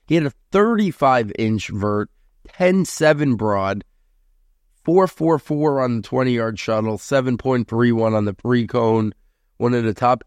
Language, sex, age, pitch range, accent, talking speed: English, male, 30-49, 105-125 Hz, American, 115 wpm